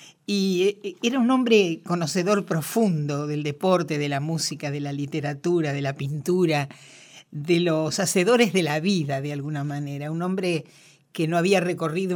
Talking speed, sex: 160 wpm, female